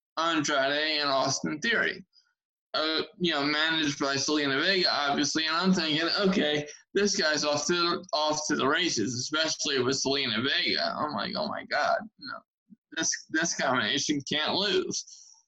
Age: 20-39